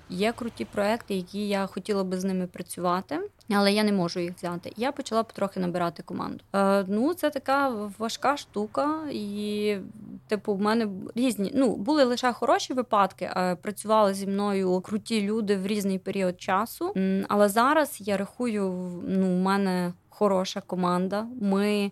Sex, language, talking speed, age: female, Ukrainian, 155 wpm, 20-39